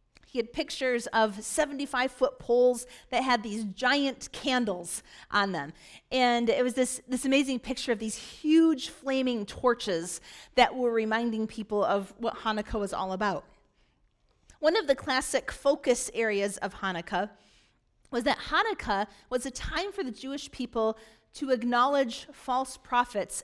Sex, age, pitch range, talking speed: female, 40-59, 215-265 Hz, 145 wpm